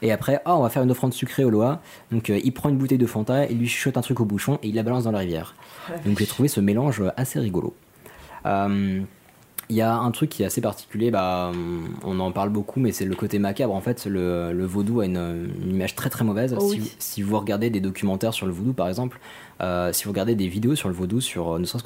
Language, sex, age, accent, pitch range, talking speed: French, male, 20-39, French, 90-120 Hz, 260 wpm